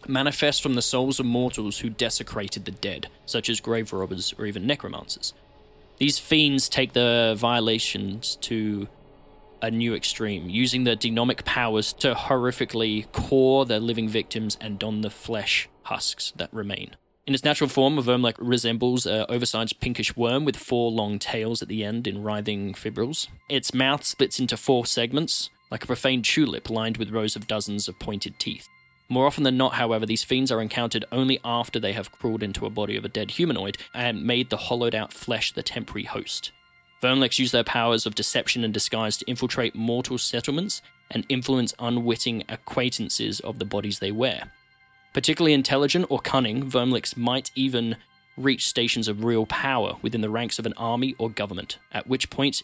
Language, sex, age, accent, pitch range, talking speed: English, male, 20-39, Australian, 110-130 Hz, 175 wpm